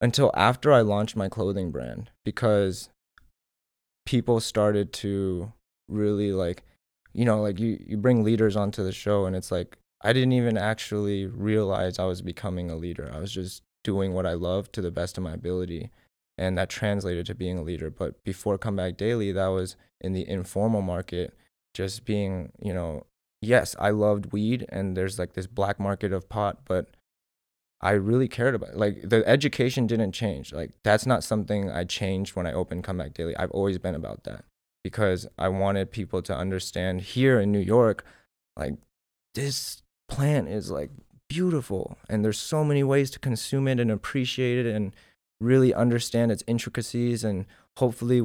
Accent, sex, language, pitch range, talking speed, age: American, male, English, 95-115 Hz, 175 wpm, 20-39